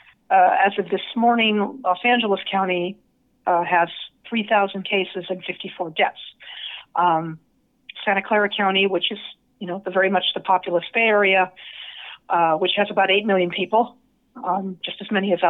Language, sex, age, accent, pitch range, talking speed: English, female, 40-59, American, 180-215 Hz, 165 wpm